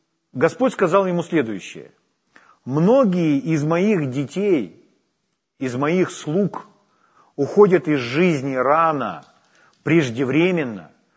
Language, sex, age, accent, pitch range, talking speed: Ukrainian, male, 40-59, native, 150-210 Hz, 85 wpm